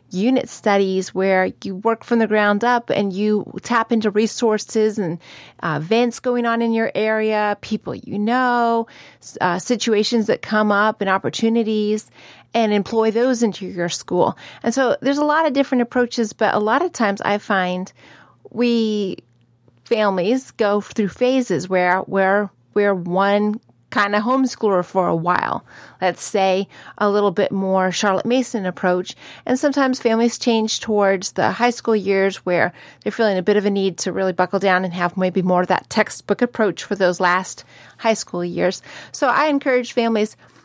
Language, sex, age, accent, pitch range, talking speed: English, female, 30-49, American, 185-230 Hz, 170 wpm